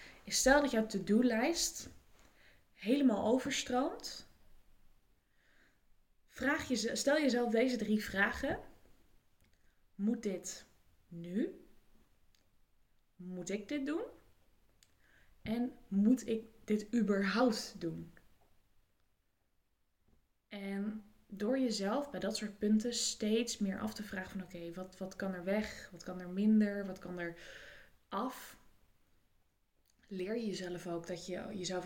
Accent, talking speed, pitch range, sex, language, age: Dutch, 115 wpm, 175-220 Hz, female, Dutch, 20-39